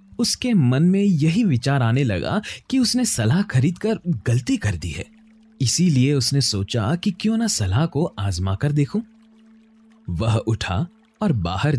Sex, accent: male, native